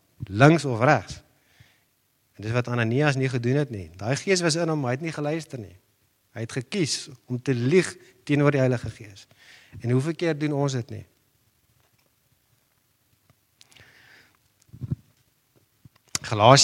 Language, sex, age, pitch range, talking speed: English, male, 50-69, 115-140 Hz, 135 wpm